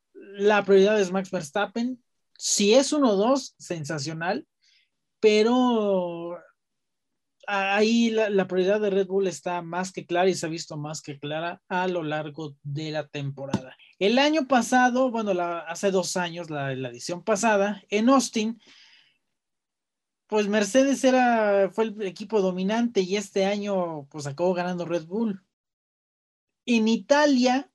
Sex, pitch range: male, 170-225 Hz